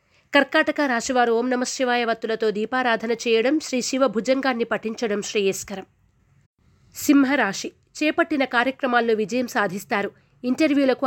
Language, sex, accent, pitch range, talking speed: Telugu, female, native, 220-265 Hz, 100 wpm